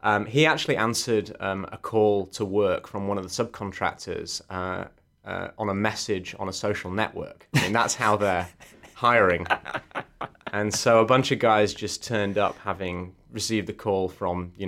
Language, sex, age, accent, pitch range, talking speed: English, male, 20-39, British, 90-110 Hz, 180 wpm